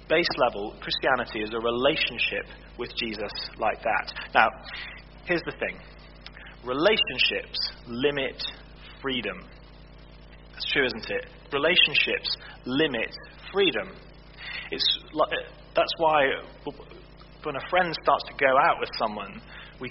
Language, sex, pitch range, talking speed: English, male, 115-150 Hz, 115 wpm